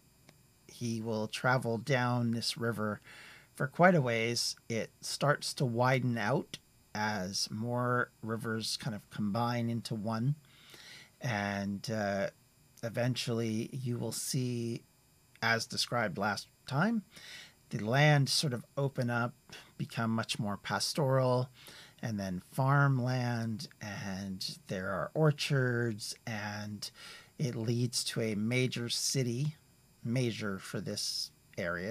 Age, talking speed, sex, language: 40-59, 115 wpm, male, English